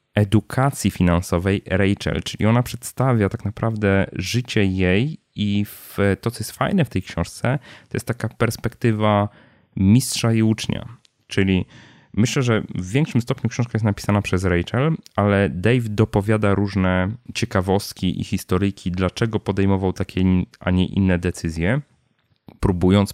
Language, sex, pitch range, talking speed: Polish, male, 95-115 Hz, 130 wpm